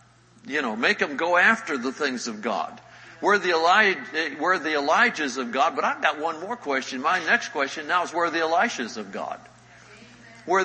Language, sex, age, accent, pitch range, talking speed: English, male, 60-79, American, 140-170 Hz, 205 wpm